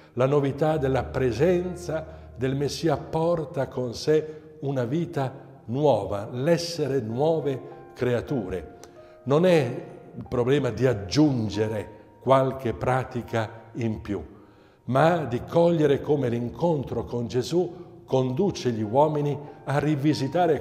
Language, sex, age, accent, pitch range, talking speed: Italian, male, 60-79, native, 115-145 Hz, 110 wpm